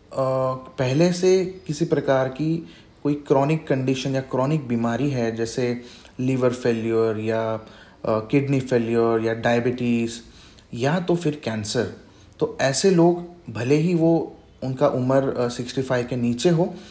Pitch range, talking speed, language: 115-145 Hz, 130 wpm, Hindi